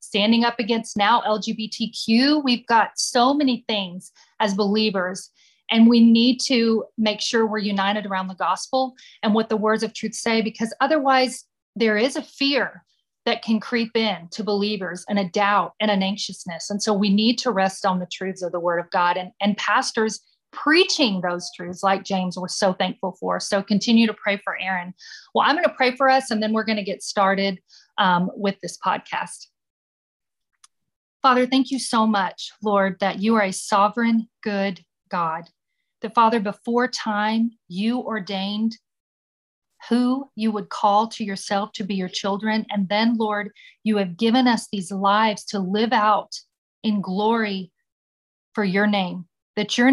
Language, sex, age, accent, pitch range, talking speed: English, female, 40-59, American, 195-230 Hz, 175 wpm